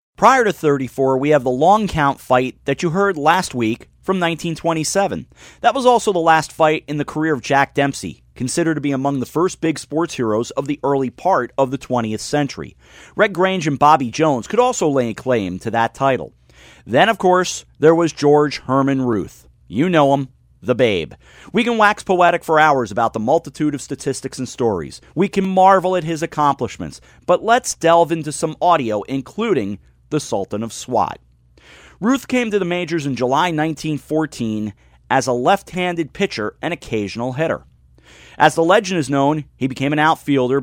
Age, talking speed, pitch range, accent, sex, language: 40-59, 185 wpm, 125-170 Hz, American, male, English